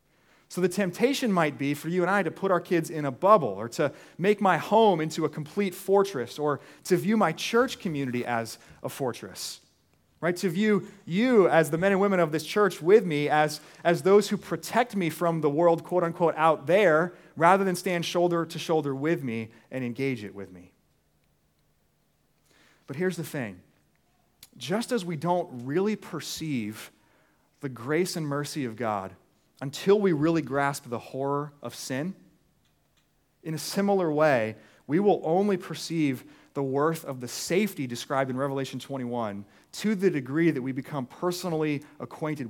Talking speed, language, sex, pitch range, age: 170 wpm, English, male, 135-180 Hz, 30-49